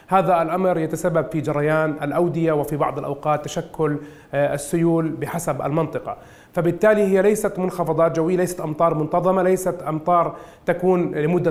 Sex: male